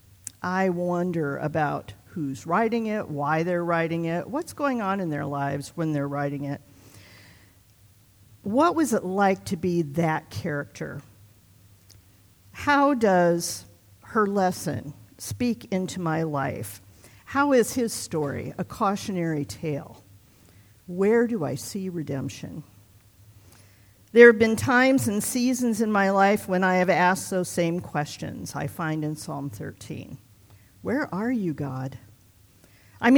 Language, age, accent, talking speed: English, 50-69, American, 135 wpm